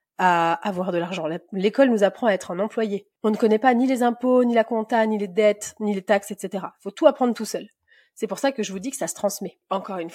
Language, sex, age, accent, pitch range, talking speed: French, female, 30-49, French, 195-255 Hz, 270 wpm